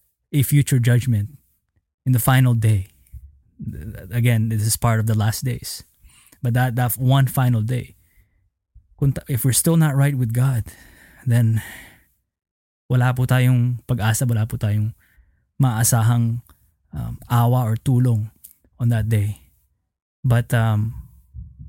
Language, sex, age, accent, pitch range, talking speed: Filipino, male, 20-39, native, 110-130 Hz, 125 wpm